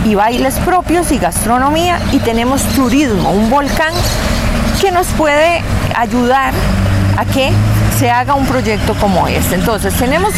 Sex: female